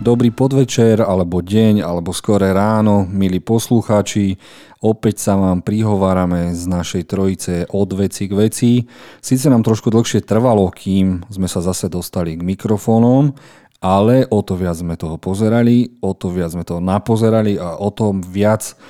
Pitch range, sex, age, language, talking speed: 90-110 Hz, male, 40-59, Slovak, 155 wpm